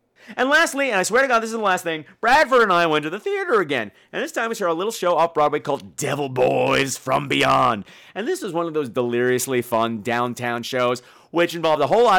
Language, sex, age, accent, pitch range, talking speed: English, male, 40-59, American, 130-195 Hz, 245 wpm